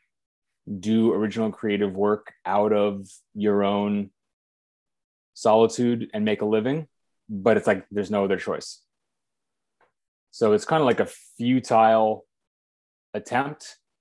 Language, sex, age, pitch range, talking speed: English, male, 30-49, 95-115 Hz, 120 wpm